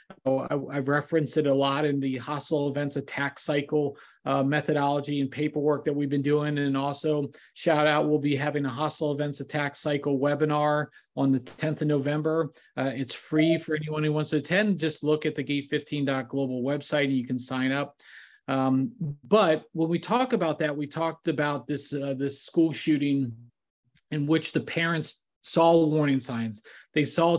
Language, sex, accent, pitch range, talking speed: English, male, American, 140-160 Hz, 180 wpm